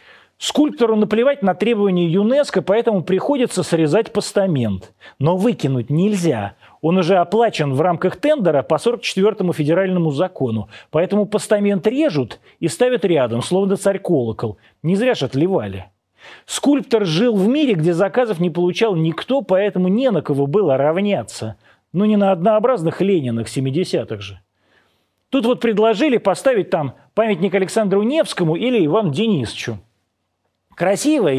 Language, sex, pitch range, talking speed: Russian, male, 140-210 Hz, 130 wpm